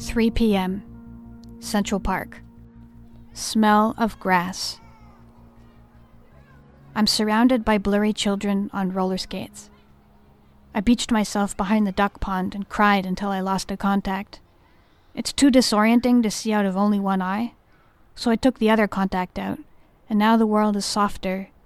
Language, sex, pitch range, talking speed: English, female, 185-215 Hz, 145 wpm